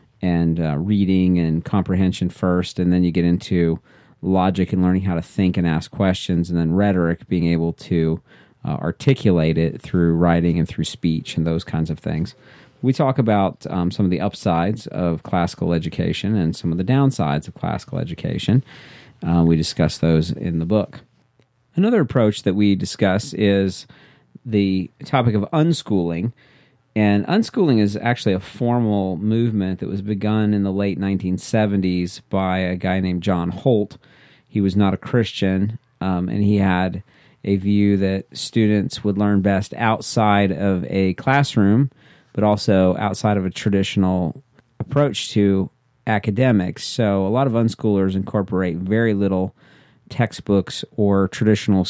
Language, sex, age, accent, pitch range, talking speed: English, male, 40-59, American, 90-110 Hz, 155 wpm